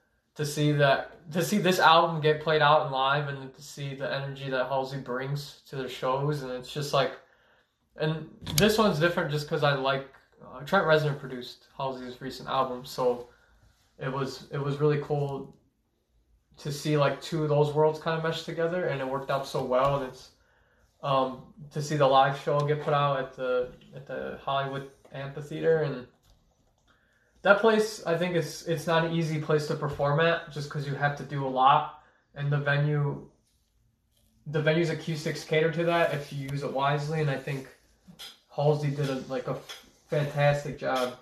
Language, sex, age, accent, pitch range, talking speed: English, male, 20-39, American, 135-155 Hz, 190 wpm